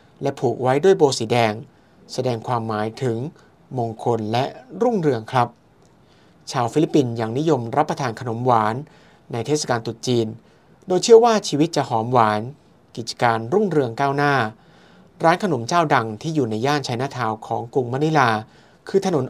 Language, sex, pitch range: Thai, male, 120-155 Hz